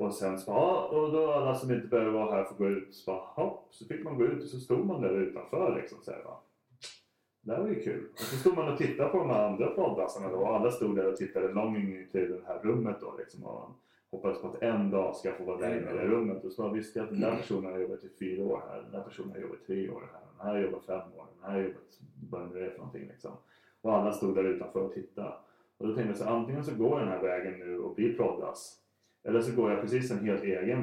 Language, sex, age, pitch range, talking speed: Swedish, male, 30-49, 95-115 Hz, 290 wpm